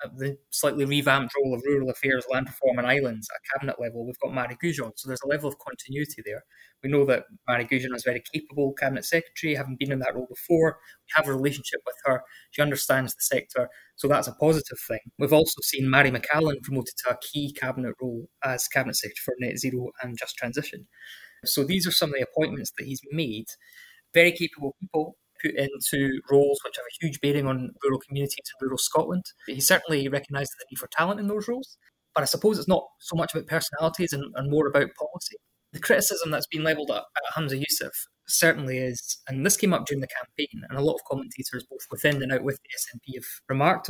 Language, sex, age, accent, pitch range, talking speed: English, male, 20-39, British, 130-160 Hz, 215 wpm